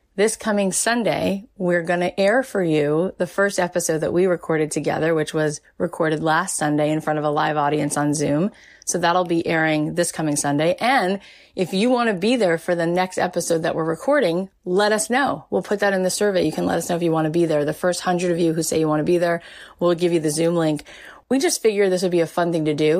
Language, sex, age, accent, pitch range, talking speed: English, female, 20-39, American, 155-190 Hz, 260 wpm